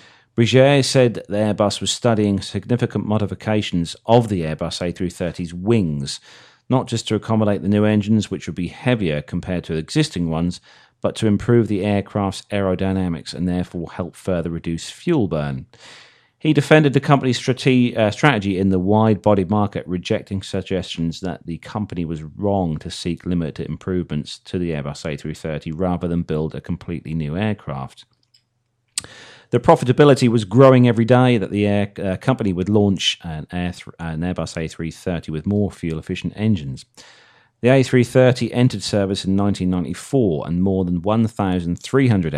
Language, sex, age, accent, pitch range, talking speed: English, male, 40-59, British, 85-115 Hz, 150 wpm